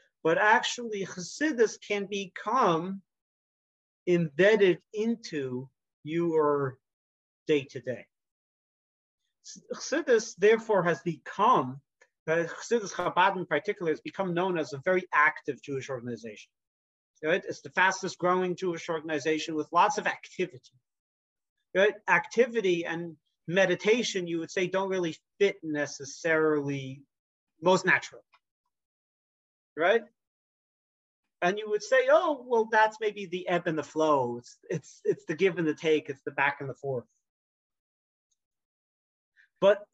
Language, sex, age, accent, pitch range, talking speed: English, male, 40-59, American, 145-200 Hz, 115 wpm